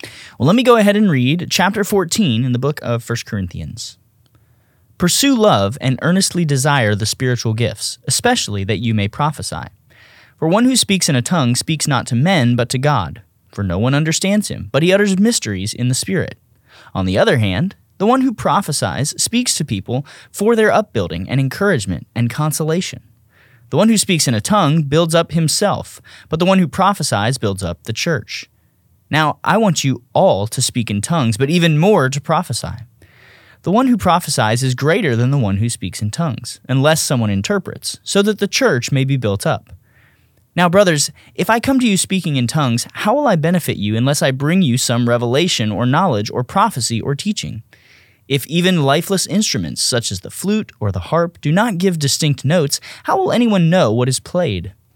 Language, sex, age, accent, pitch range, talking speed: English, male, 30-49, American, 115-175 Hz, 195 wpm